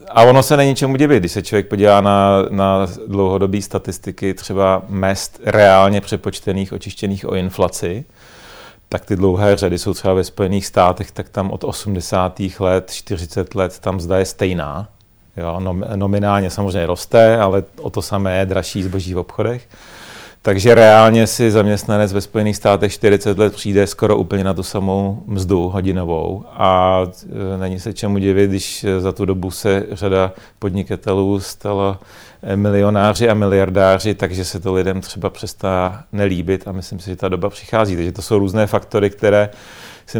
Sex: male